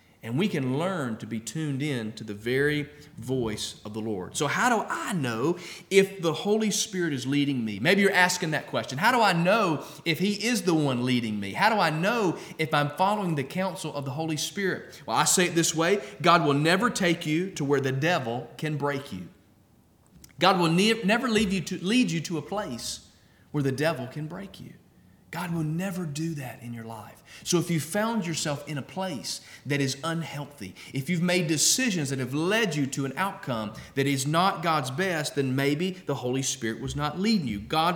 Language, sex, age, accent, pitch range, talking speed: English, male, 40-59, American, 130-185 Hz, 210 wpm